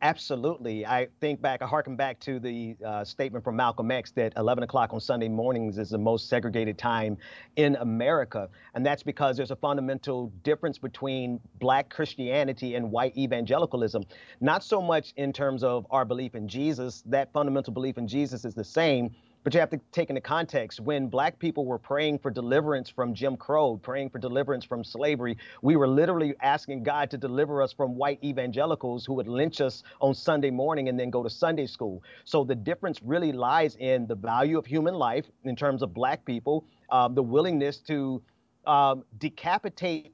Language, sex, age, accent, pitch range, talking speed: English, male, 40-59, American, 120-145 Hz, 190 wpm